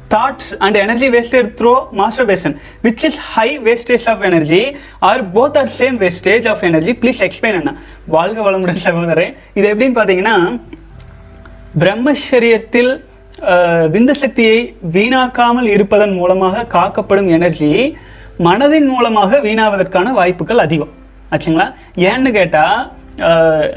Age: 30-49